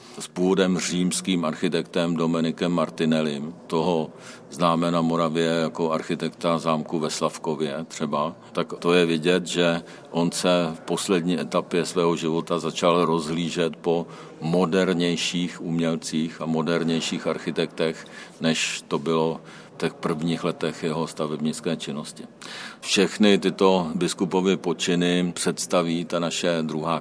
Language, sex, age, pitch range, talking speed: Czech, male, 50-69, 80-85 Hz, 120 wpm